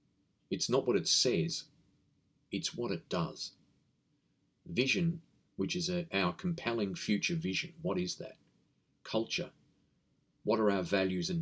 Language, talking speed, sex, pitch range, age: English, 130 wpm, male, 120-175 Hz, 40-59